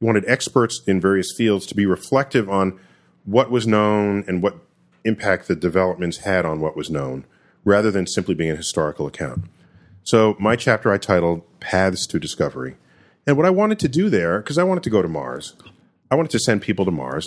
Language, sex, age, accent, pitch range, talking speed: English, male, 40-59, American, 95-145 Hz, 200 wpm